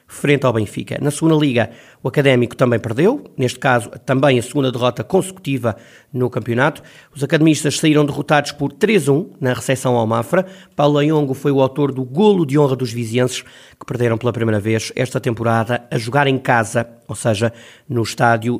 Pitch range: 120-150 Hz